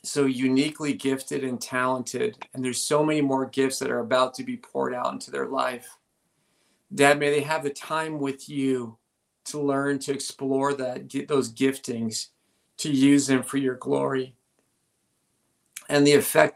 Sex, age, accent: male, 40-59, American